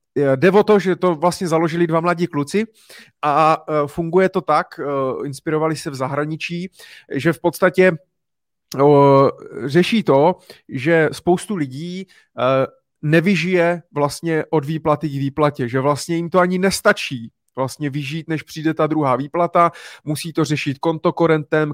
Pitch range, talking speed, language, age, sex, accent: 145-175 Hz, 135 wpm, Czech, 30-49, male, native